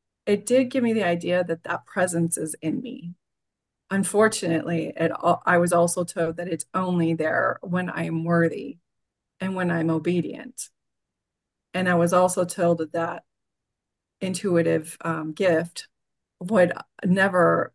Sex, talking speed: female, 140 wpm